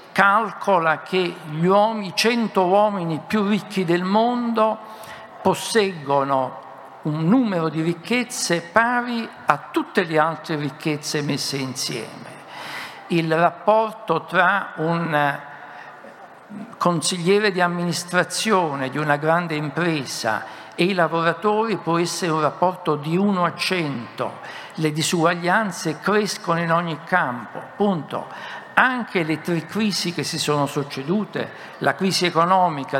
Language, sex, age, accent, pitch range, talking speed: Italian, male, 60-79, native, 150-195 Hz, 115 wpm